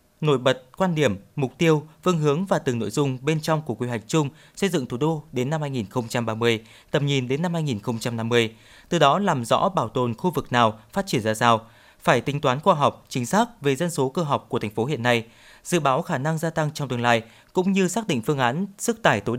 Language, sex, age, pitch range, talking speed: Vietnamese, male, 20-39, 120-160 Hz, 240 wpm